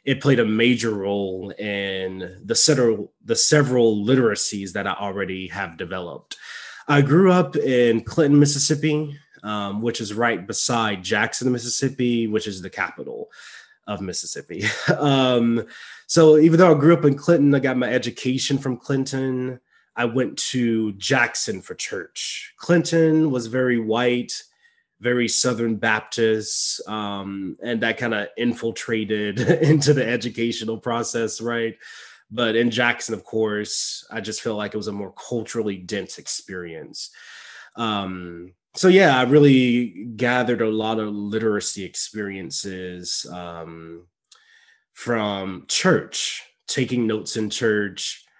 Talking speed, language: 130 wpm, English